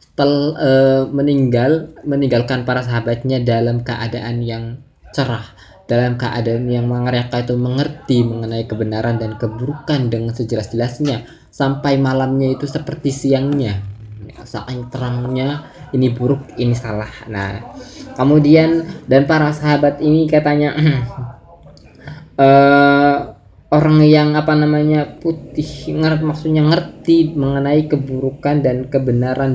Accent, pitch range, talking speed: native, 120-145 Hz, 110 wpm